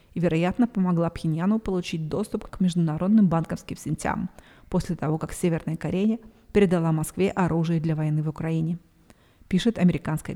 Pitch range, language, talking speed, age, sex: 165-190 Hz, Russian, 140 wpm, 30-49, female